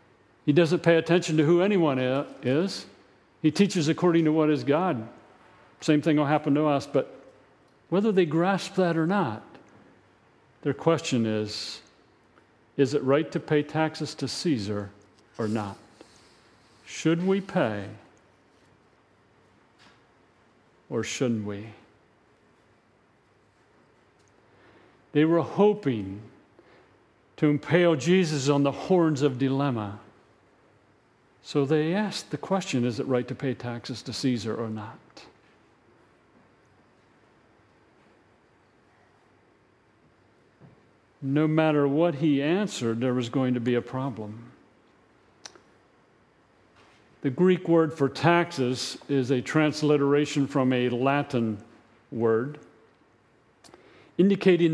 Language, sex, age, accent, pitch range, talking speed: English, male, 50-69, American, 125-165 Hz, 105 wpm